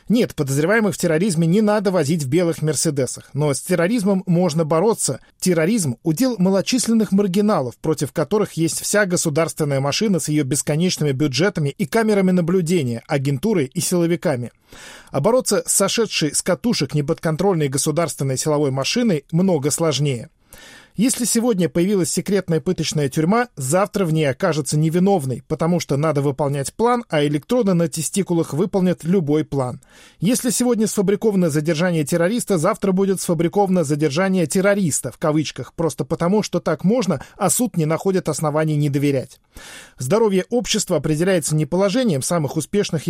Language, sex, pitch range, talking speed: Russian, male, 150-200 Hz, 140 wpm